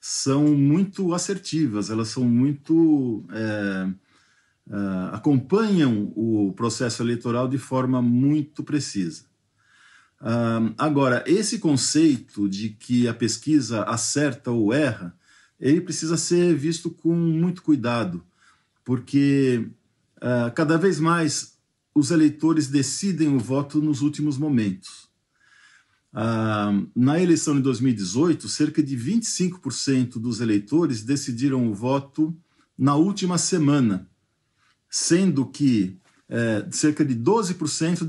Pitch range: 115-160 Hz